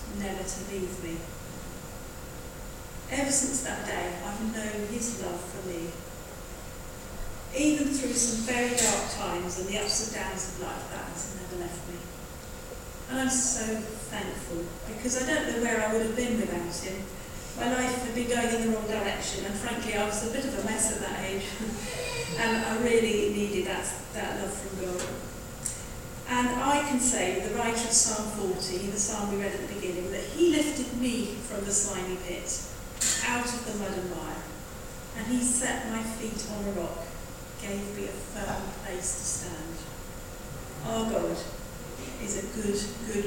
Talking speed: 180 wpm